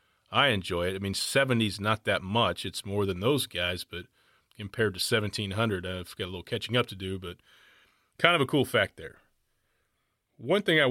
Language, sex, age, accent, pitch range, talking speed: English, male, 40-59, American, 95-120 Hz, 200 wpm